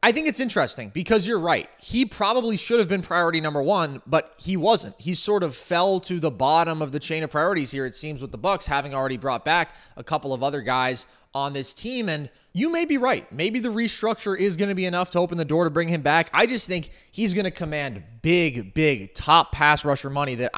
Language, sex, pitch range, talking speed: English, male, 155-215 Hz, 240 wpm